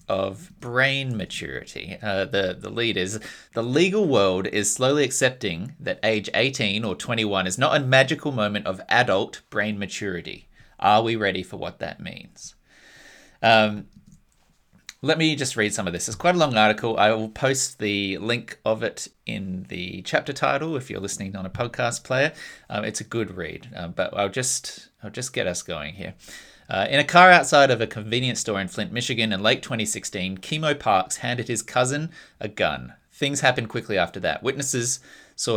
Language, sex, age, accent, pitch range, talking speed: English, male, 30-49, Australian, 100-130 Hz, 185 wpm